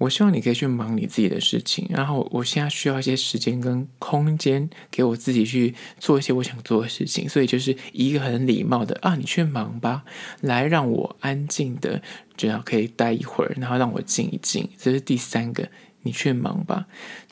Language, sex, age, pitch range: Chinese, male, 20-39, 120-165 Hz